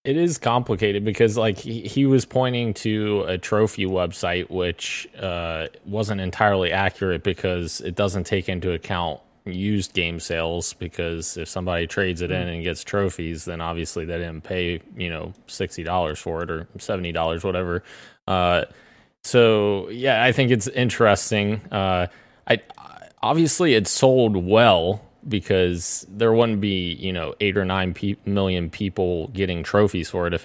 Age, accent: 20-39, American